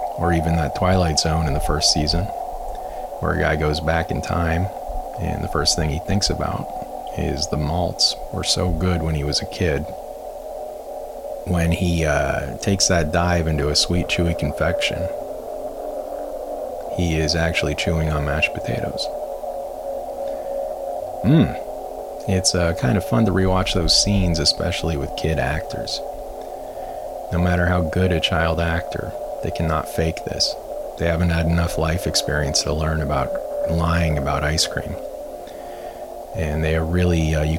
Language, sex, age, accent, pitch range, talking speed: English, male, 30-49, American, 75-85 Hz, 155 wpm